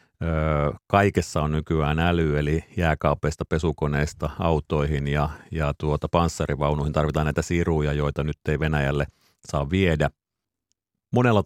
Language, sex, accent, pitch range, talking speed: Finnish, male, native, 80-95 Hz, 115 wpm